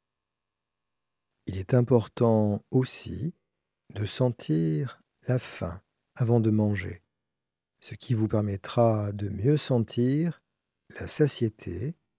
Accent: French